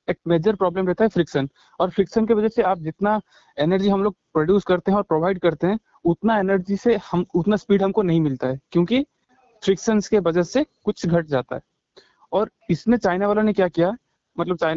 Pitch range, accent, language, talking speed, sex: 165-210 Hz, native, Hindi, 205 wpm, male